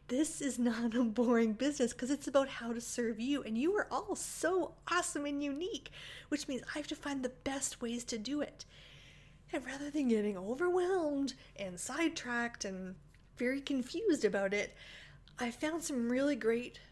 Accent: American